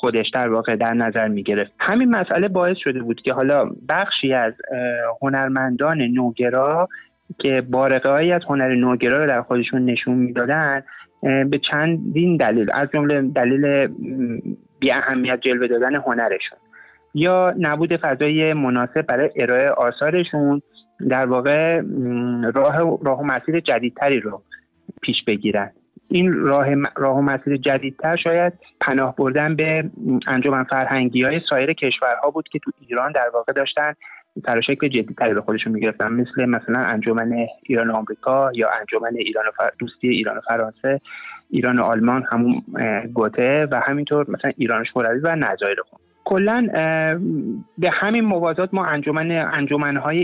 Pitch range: 125-155 Hz